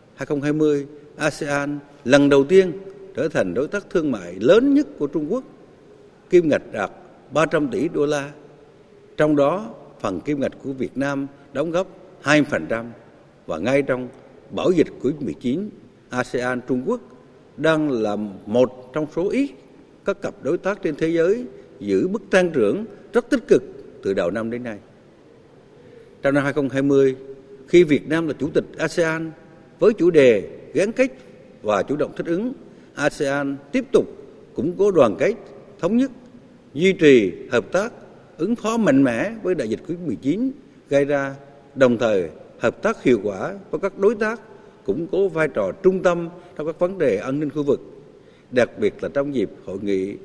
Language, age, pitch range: Vietnamese, 60-79, 135-195 Hz